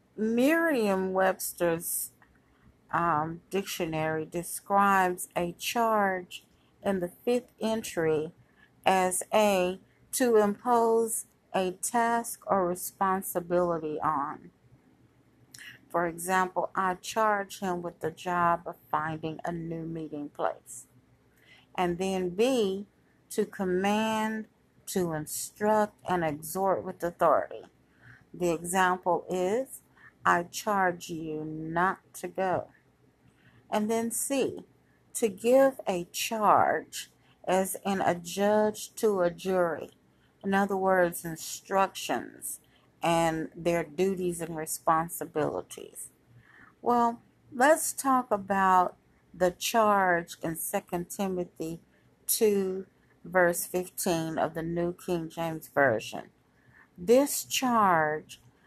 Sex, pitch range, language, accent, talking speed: female, 170-205 Hz, English, American, 95 wpm